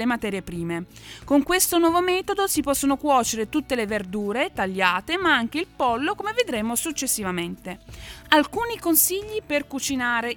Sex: female